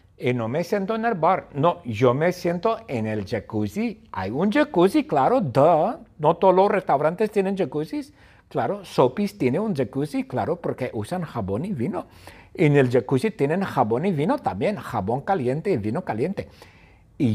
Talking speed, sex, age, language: 175 wpm, male, 60-79, English